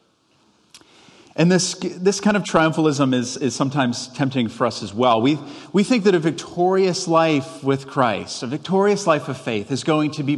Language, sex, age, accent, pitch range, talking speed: English, male, 30-49, American, 130-170 Hz, 185 wpm